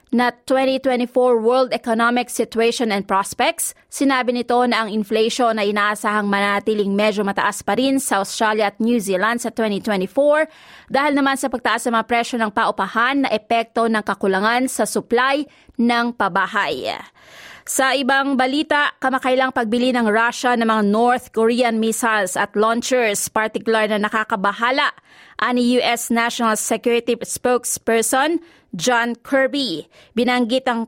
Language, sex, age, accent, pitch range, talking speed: Filipino, female, 20-39, native, 215-250 Hz, 130 wpm